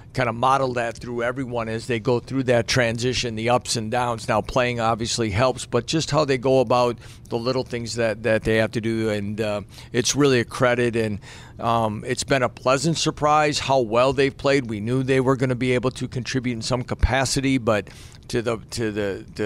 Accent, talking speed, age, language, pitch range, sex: American, 215 wpm, 50-69, English, 110-125 Hz, male